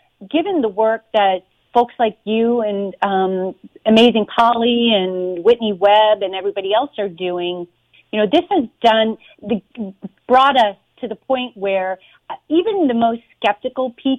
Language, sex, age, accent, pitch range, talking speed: English, female, 40-59, American, 195-255 Hz, 150 wpm